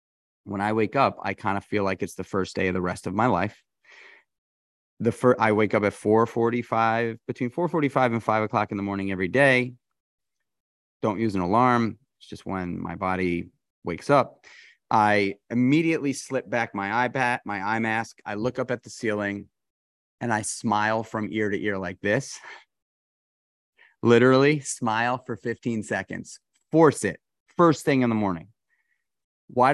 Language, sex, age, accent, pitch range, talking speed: English, male, 30-49, American, 100-115 Hz, 170 wpm